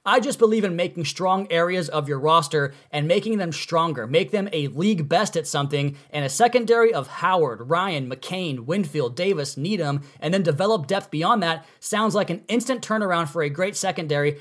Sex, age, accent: male, 20-39, American